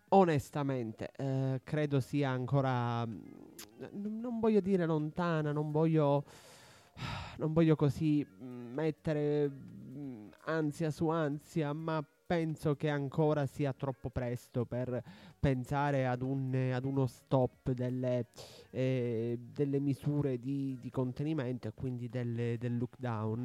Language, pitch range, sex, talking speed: Italian, 130-160 Hz, male, 115 wpm